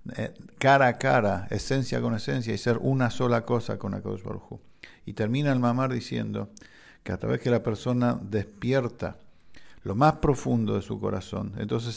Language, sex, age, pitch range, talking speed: English, male, 50-69, 105-125 Hz, 165 wpm